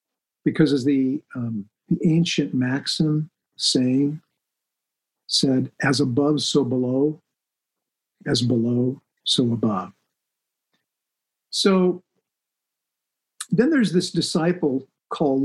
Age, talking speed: 50-69, 90 wpm